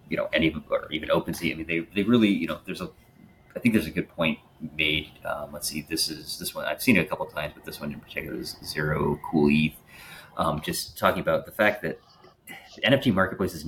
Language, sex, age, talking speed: English, male, 30-49, 245 wpm